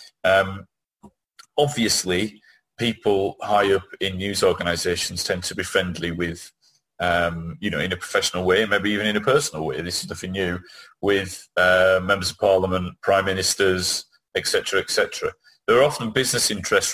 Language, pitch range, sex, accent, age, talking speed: English, 95-145 Hz, male, British, 30-49, 155 wpm